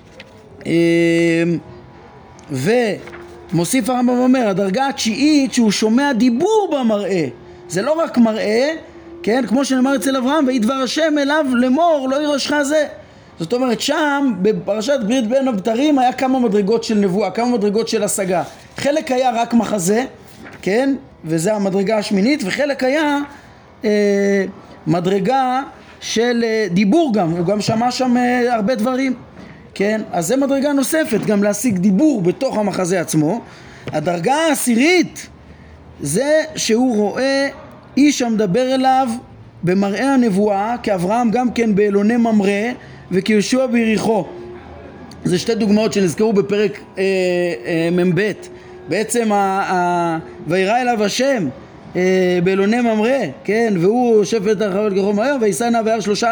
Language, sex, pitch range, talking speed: Hebrew, male, 200-265 Hz, 125 wpm